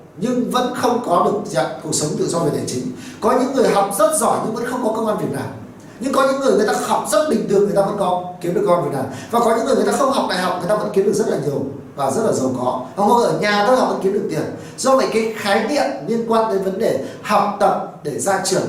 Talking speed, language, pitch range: 300 wpm, Vietnamese, 175-235 Hz